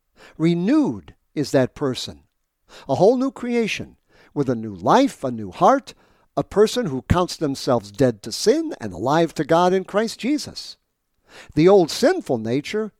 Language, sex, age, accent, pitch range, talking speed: English, male, 60-79, American, 130-195 Hz, 155 wpm